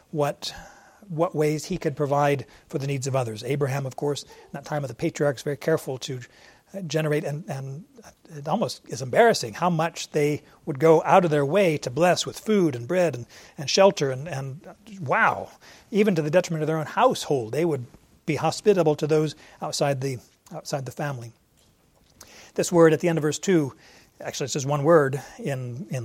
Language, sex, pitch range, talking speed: English, male, 140-165 Hz, 195 wpm